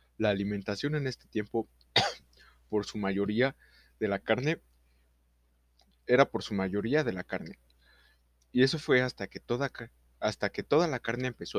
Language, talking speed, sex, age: Spanish, 155 wpm, male, 20-39